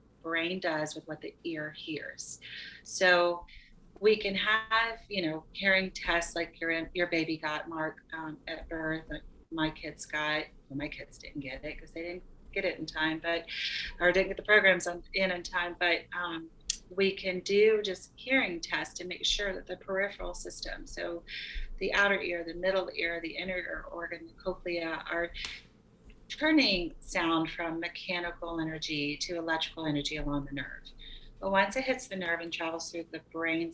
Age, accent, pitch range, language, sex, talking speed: 30-49, American, 155-180 Hz, English, female, 180 wpm